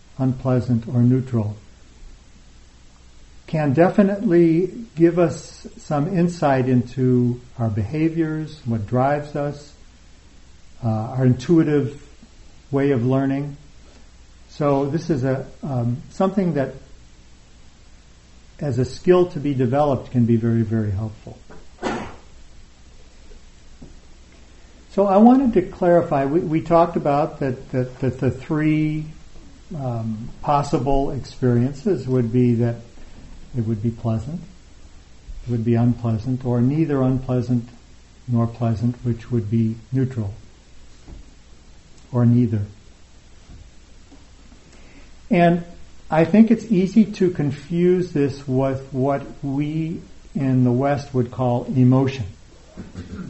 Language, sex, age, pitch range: English, male, 50-69, 105-150 Hz